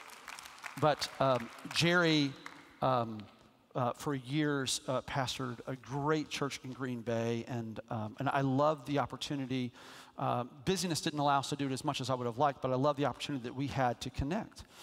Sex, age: male, 40-59